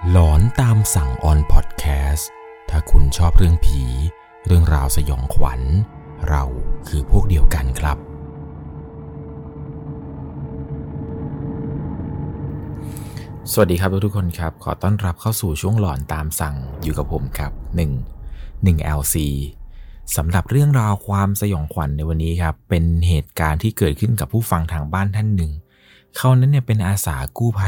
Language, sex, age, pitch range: Thai, male, 20-39, 75-100 Hz